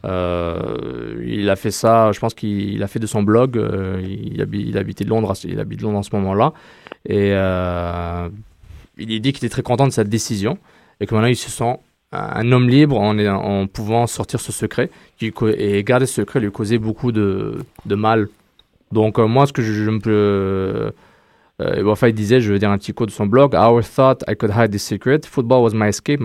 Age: 20-39